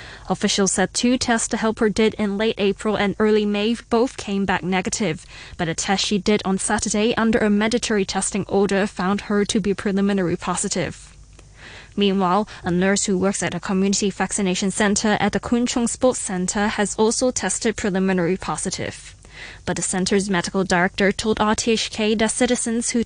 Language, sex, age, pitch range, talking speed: English, female, 10-29, 130-200 Hz, 170 wpm